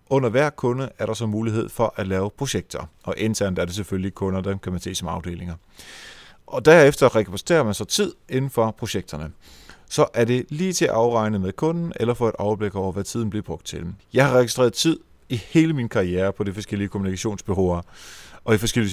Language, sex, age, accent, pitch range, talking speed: Danish, male, 30-49, native, 95-130 Hz, 210 wpm